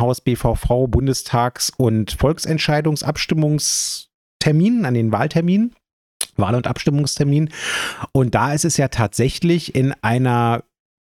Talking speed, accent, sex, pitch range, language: 105 wpm, German, male, 105-140 Hz, German